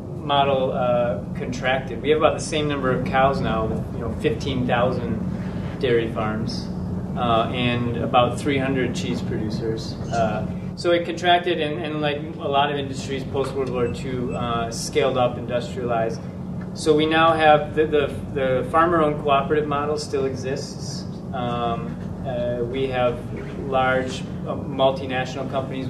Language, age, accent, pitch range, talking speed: English, 30-49, American, 125-150 Hz, 150 wpm